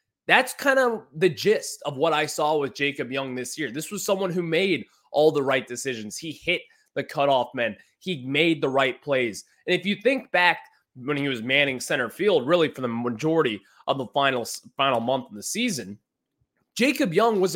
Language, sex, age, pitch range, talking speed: English, male, 20-39, 140-210 Hz, 200 wpm